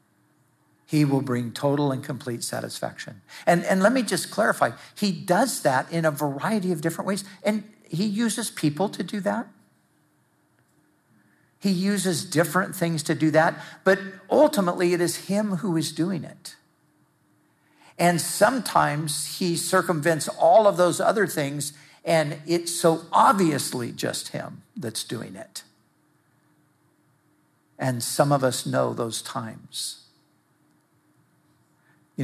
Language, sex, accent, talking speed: English, male, American, 130 wpm